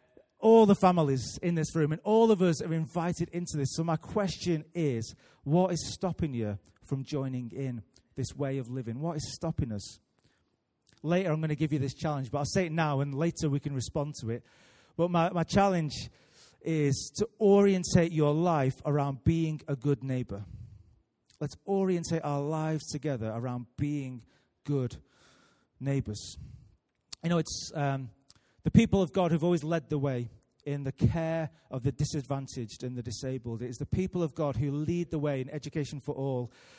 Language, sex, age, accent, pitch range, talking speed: English, male, 30-49, British, 130-170 Hz, 185 wpm